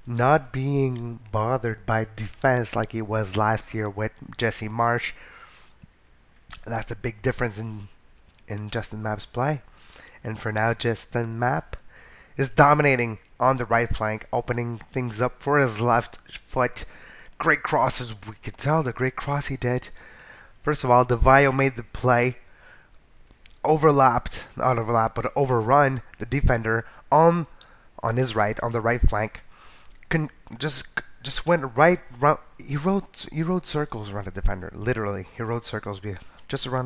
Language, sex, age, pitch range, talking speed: English, male, 20-39, 115-155 Hz, 155 wpm